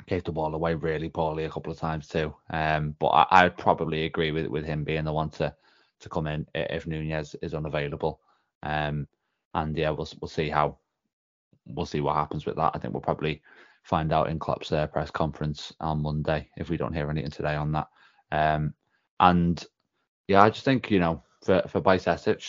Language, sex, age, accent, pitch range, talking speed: English, male, 20-39, British, 75-85 Hz, 205 wpm